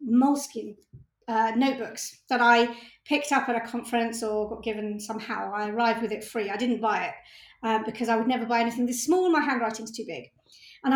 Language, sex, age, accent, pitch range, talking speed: English, female, 40-59, British, 235-300 Hz, 205 wpm